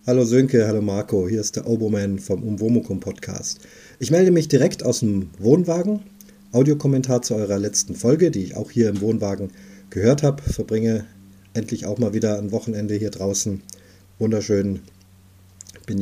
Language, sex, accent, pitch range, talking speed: German, male, German, 105-130 Hz, 155 wpm